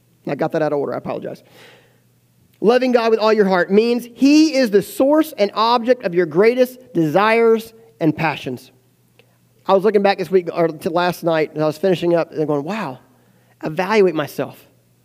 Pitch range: 155-220 Hz